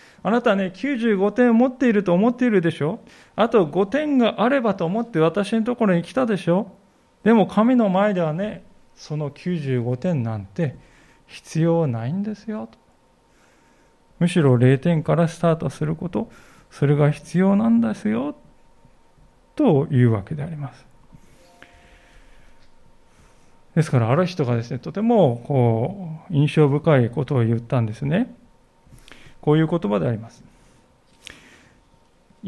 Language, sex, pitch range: Japanese, male, 145-220 Hz